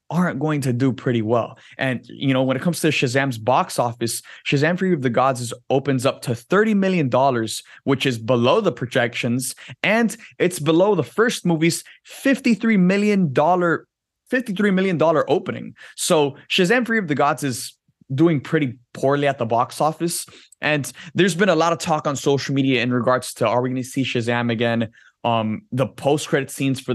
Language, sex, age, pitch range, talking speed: English, male, 20-39, 120-150 Hz, 190 wpm